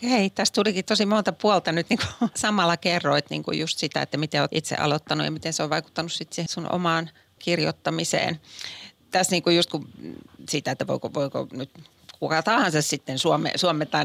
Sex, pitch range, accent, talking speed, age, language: female, 155-185 Hz, native, 170 wpm, 30-49, Finnish